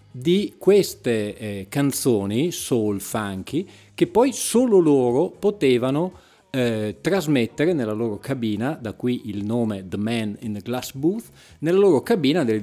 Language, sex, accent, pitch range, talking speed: Italian, male, native, 105-140 Hz, 145 wpm